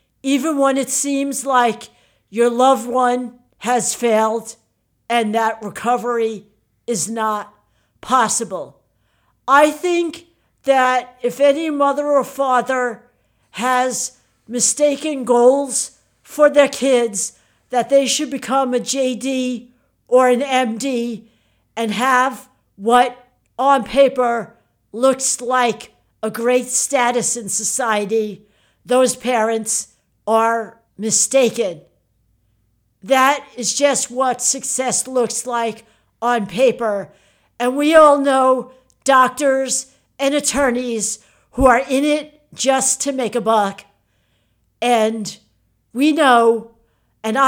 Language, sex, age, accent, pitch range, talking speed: English, female, 60-79, American, 225-270 Hz, 105 wpm